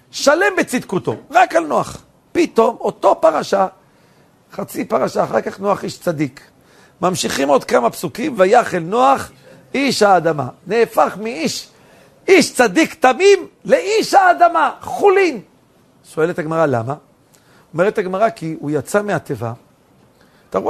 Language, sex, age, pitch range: Hebrew, male, 50-69, 165-255 Hz